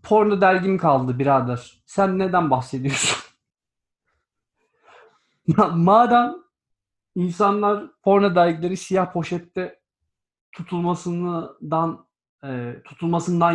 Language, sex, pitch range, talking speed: Turkish, male, 155-210 Hz, 65 wpm